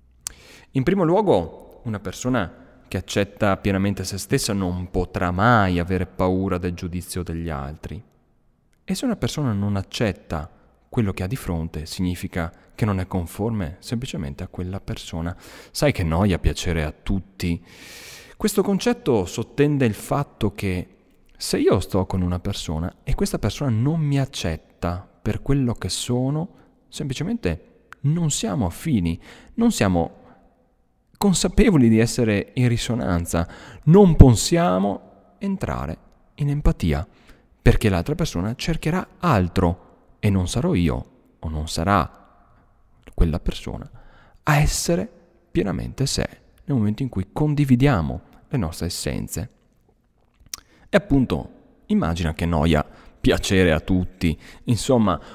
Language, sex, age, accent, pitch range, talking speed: Italian, male, 30-49, native, 90-135 Hz, 130 wpm